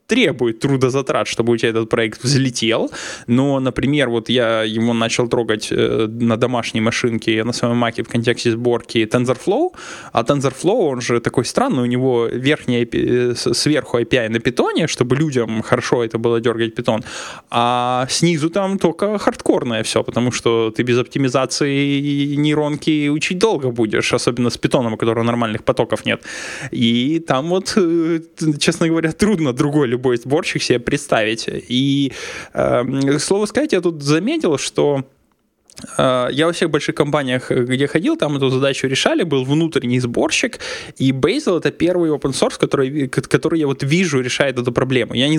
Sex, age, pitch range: male, 20-39, 120-150 Hz